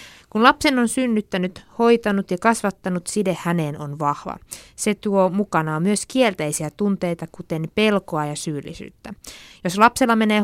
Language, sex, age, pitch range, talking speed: Finnish, female, 20-39, 170-215 Hz, 140 wpm